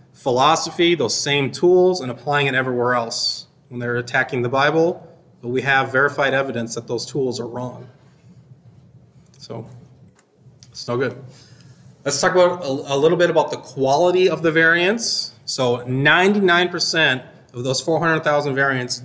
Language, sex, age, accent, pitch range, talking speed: English, male, 30-49, American, 125-150 Hz, 150 wpm